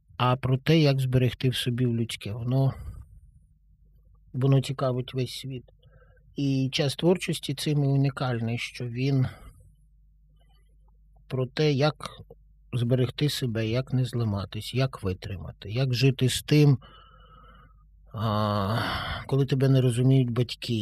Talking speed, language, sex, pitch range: 115 wpm, Ukrainian, male, 115-140 Hz